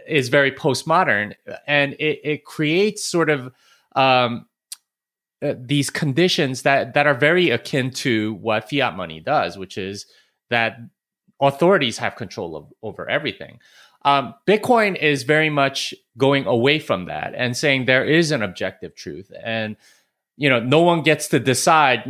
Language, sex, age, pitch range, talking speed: English, male, 30-49, 110-145 Hz, 150 wpm